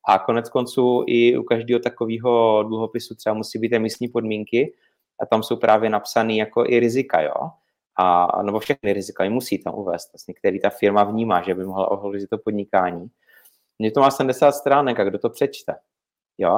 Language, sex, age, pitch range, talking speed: Czech, male, 30-49, 105-120 Hz, 190 wpm